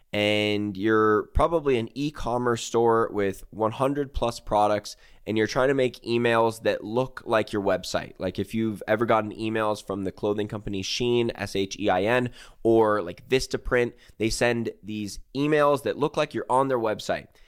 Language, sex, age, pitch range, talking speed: English, male, 20-39, 110-135 Hz, 180 wpm